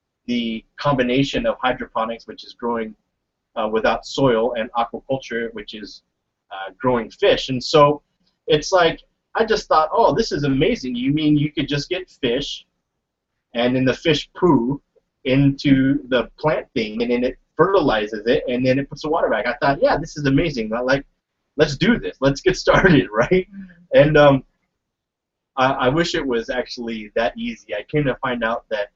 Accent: American